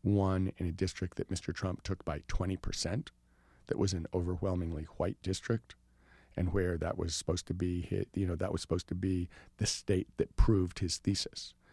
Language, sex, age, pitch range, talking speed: English, male, 50-69, 90-110 Hz, 190 wpm